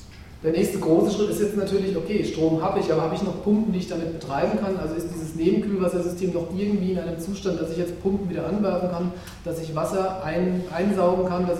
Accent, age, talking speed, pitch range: German, 40-59, 230 wpm, 165-195 Hz